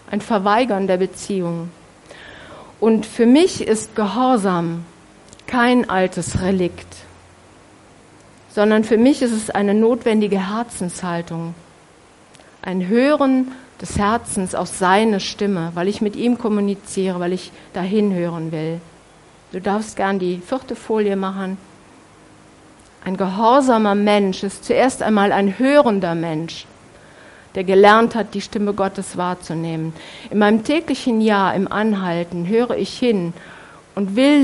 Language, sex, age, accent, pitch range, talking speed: German, female, 50-69, German, 185-230 Hz, 125 wpm